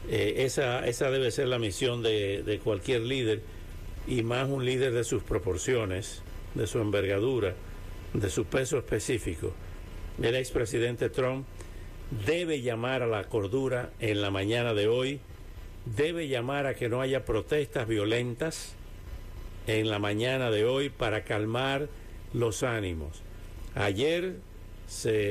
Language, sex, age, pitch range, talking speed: English, male, 60-79, 95-135 Hz, 135 wpm